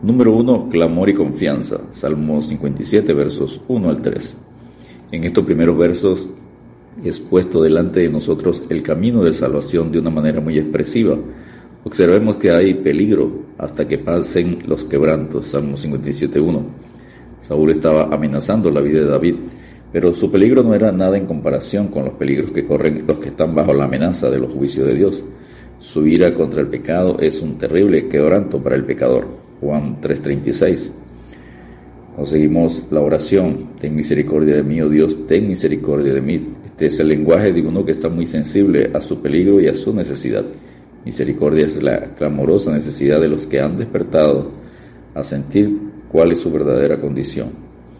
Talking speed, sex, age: 165 wpm, male, 50-69